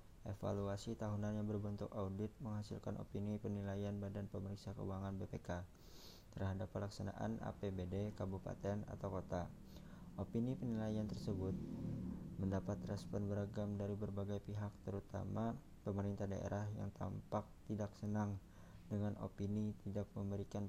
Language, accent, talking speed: Indonesian, native, 110 wpm